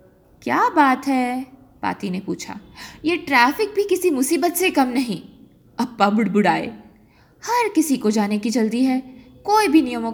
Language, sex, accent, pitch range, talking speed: Hindi, female, native, 215-305 Hz, 155 wpm